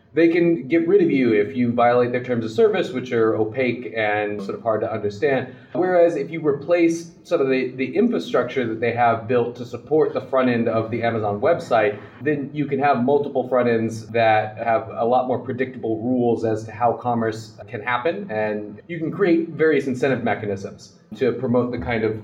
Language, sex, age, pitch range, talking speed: English, male, 30-49, 110-130 Hz, 205 wpm